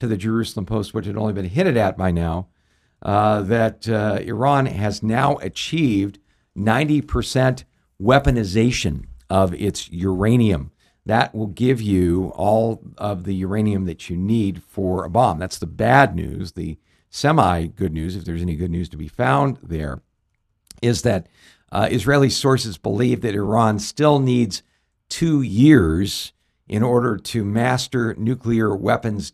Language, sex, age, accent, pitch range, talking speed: English, male, 50-69, American, 90-115 Hz, 150 wpm